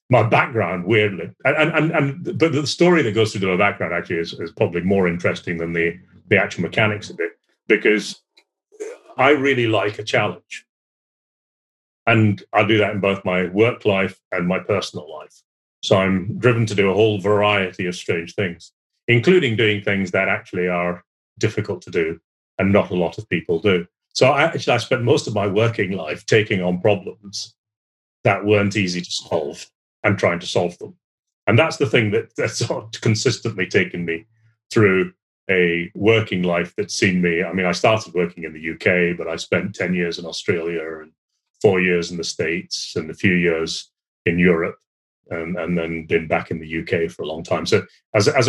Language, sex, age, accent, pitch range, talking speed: English, male, 30-49, British, 85-110 Hz, 195 wpm